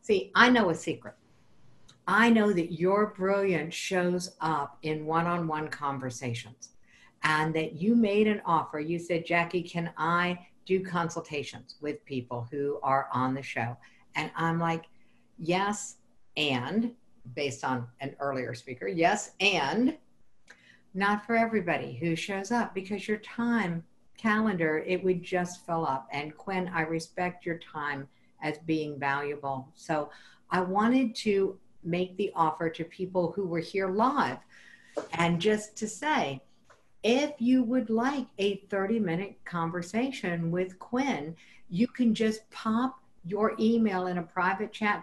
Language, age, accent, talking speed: English, 60-79, American, 145 wpm